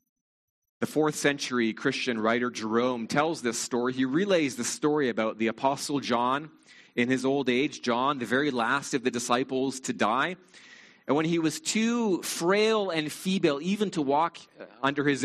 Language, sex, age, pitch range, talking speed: English, male, 30-49, 120-170 Hz, 170 wpm